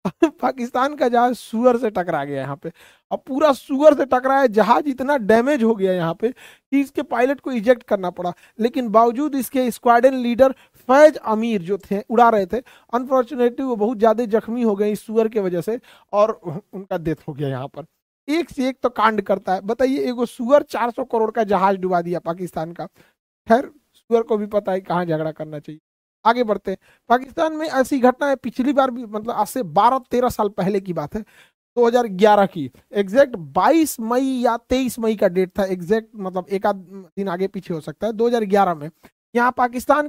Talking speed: 200 wpm